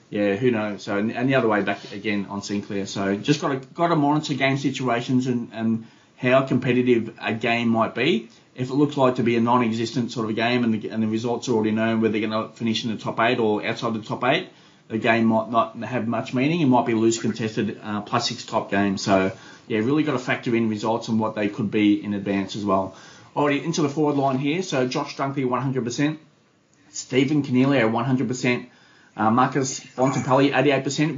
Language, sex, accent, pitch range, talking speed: English, male, Australian, 115-135 Hz, 220 wpm